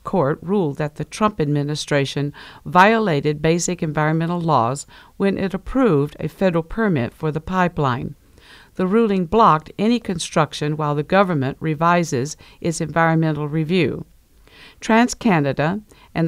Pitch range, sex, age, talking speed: 150-190 Hz, female, 50-69, 120 wpm